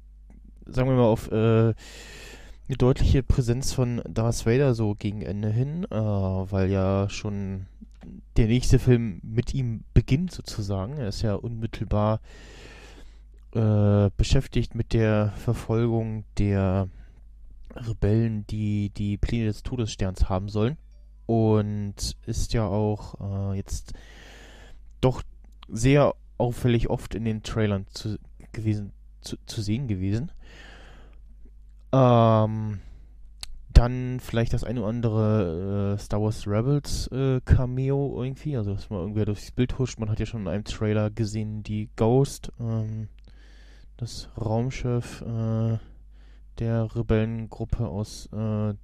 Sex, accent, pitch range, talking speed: male, German, 100-115 Hz, 125 wpm